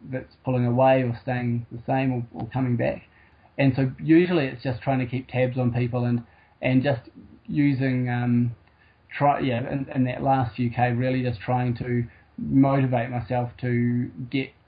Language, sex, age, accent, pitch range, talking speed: English, male, 20-39, Australian, 120-135 Hz, 175 wpm